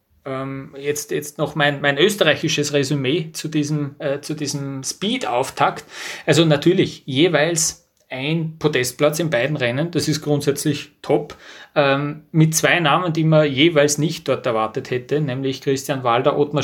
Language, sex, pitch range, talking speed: German, male, 140-160 Hz, 145 wpm